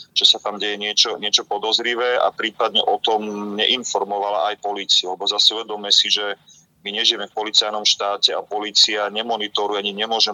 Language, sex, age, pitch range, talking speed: Slovak, male, 30-49, 105-115 Hz, 170 wpm